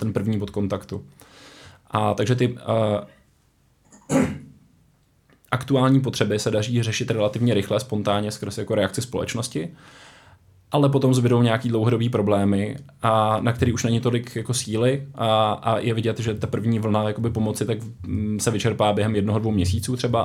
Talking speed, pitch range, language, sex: 155 wpm, 100-120 Hz, Czech, male